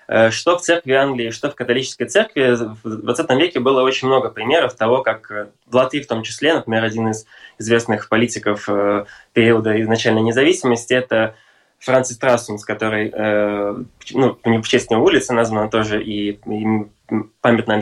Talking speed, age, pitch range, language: 140 wpm, 20-39, 110-125 Hz, Russian